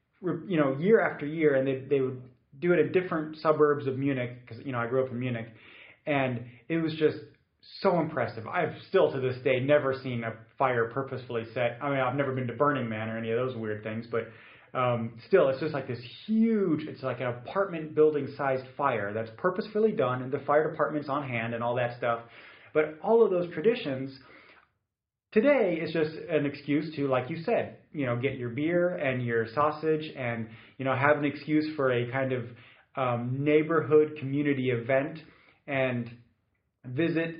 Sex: male